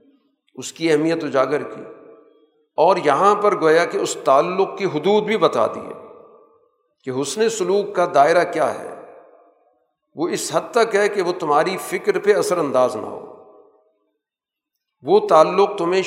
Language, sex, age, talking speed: Urdu, male, 50-69, 155 wpm